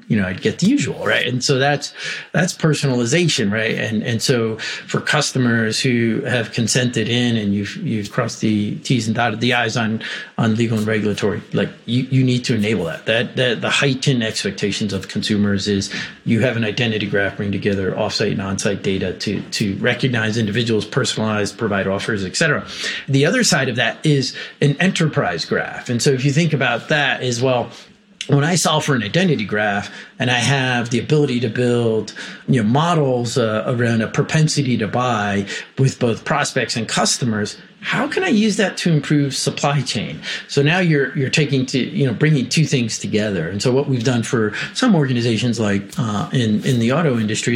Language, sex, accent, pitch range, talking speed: English, male, American, 110-140 Hz, 195 wpm